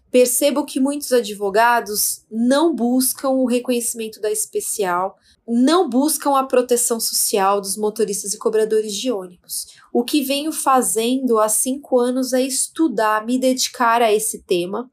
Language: Portuguese